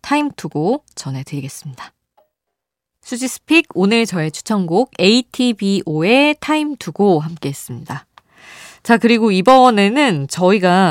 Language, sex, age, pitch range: Korean, female, 20-39, 155-240 Hz